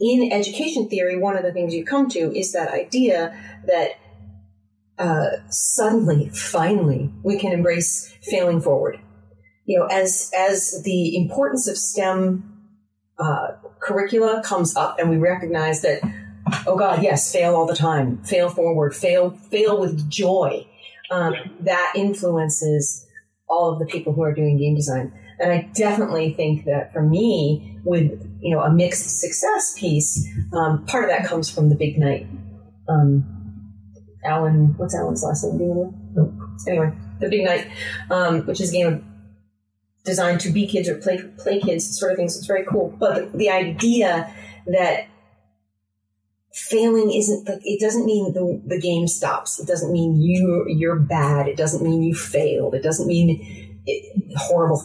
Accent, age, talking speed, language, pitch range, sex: American, 40-59, 160 wpm, English, 140-190 Hz, female